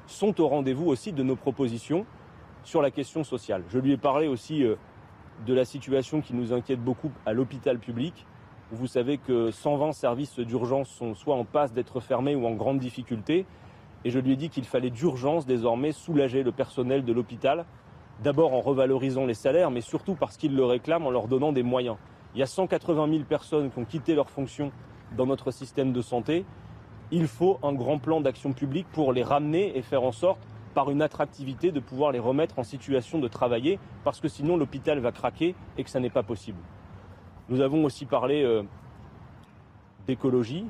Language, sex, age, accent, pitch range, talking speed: French, male, 30-49, French, 120-145 Hz, 195 wpm